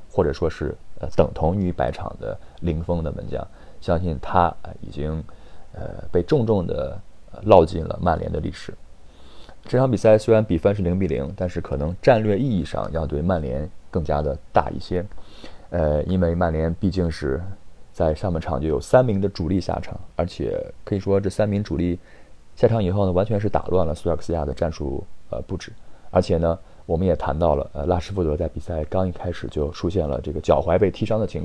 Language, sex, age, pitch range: Chinese, male, 20-39, 80-95 Hz